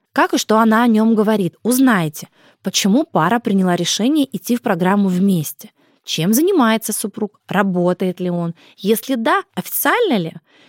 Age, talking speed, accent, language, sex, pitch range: 20-39, 145 wpm, native, Russian, female, 180-245 Hz